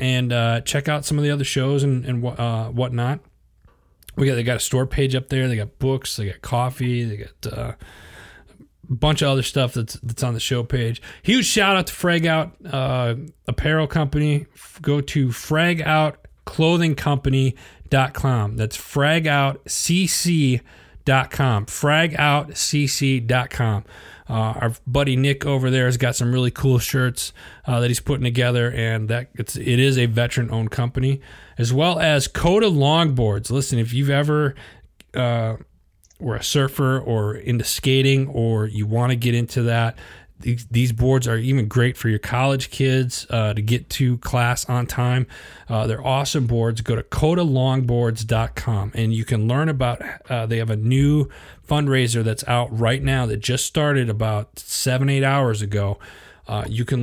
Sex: male